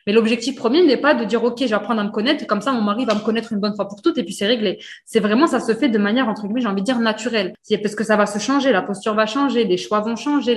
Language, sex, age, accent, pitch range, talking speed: French, female, 20-39, French, 205-265 Hz, 335 wpm